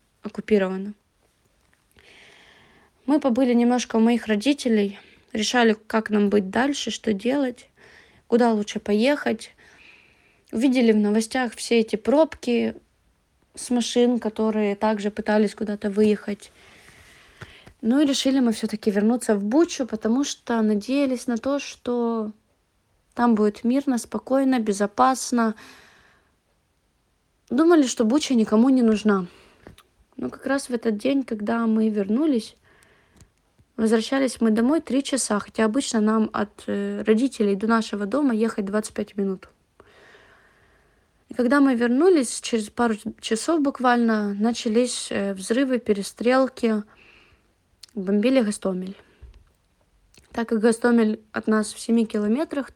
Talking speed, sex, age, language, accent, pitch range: 115 wpm, female, 20-39, Ukrainian, native, 210-255 Hz